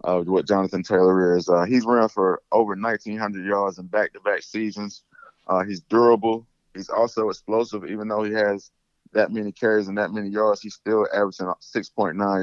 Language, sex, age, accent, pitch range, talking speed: English, male, 20-39, American, 90-105 Hz, 175 wpm